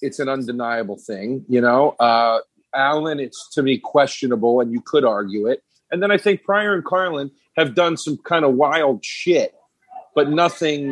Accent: American